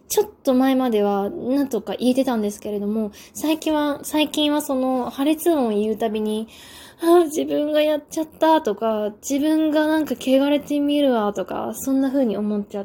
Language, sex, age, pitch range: Japanese, female, 10-29, 205-290 Hz